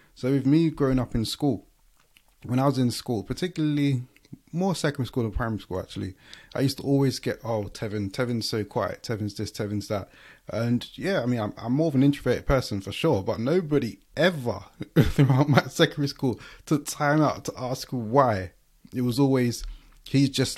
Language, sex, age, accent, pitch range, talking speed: English, male, 20-39, British, 115-140 Hz, 190 wpm